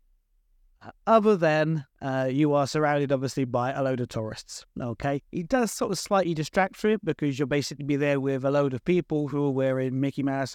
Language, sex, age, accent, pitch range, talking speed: English, male, 30-49, British, 130-155 Hz, 205 wpm